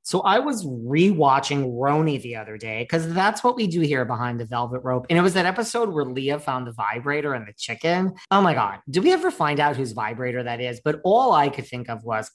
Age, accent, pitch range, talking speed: 40-59, American, 125-175 Hz, 245 wpm